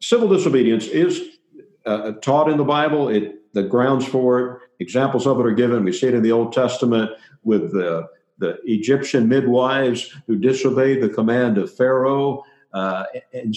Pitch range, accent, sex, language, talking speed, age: 110-140 Hz, American, male, English, 170 wpm, 60-79